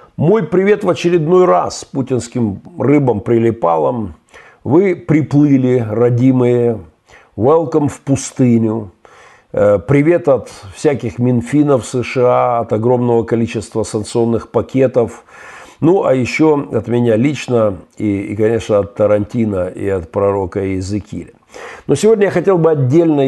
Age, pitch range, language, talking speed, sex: 50-69, 115-145 Hz, Russian, 115 wpm, male